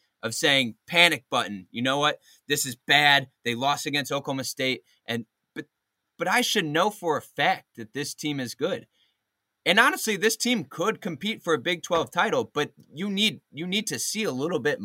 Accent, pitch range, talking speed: American, 140-210 Hz, 200 wpm